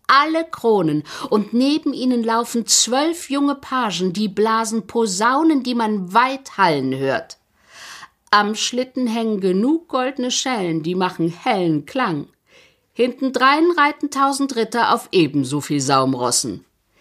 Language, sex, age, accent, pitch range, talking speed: German, female, 60-79, German, 175-255 Hz, 125 wpm